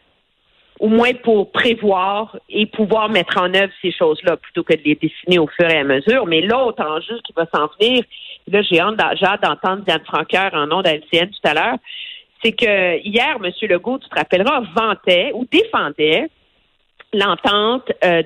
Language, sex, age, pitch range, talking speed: French, female, 50-69, 175-235 Hz, 175 wpm